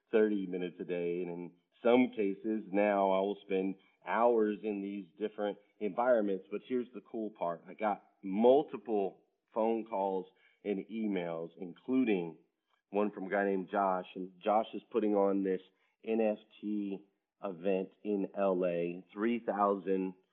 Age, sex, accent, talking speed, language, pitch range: 40-59, male, American, 140 wpm, English, 95-110 Hz